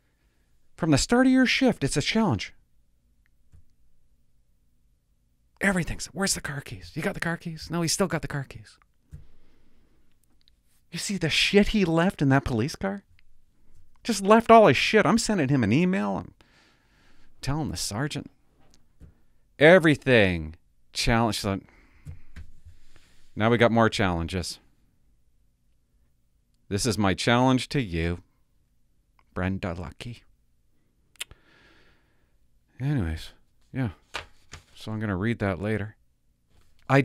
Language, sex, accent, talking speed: English, male, American, 120 wpm